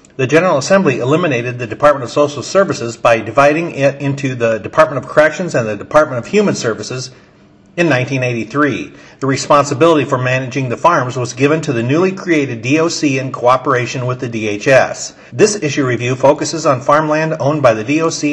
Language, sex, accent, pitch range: English, male, American, 125-150 Hz